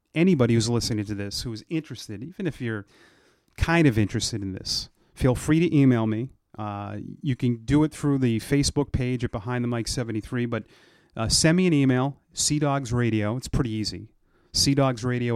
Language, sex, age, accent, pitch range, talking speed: English, male, 30-49, American, 110-140 Hz, 180 wpm